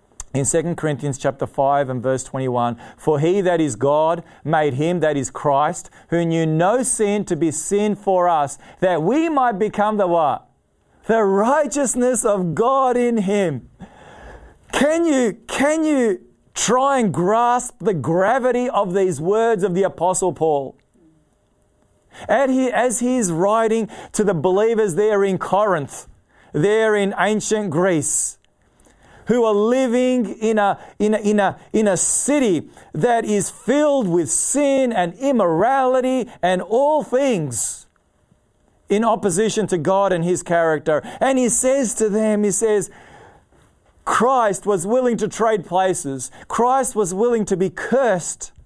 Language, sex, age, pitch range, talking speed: English, male, 30-49, 170-235 Hz, 145 wpm